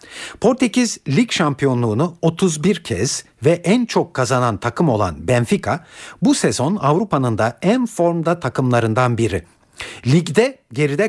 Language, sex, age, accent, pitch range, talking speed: Turkish, male, 60-79, native, 120-170 Hz, 120 wpm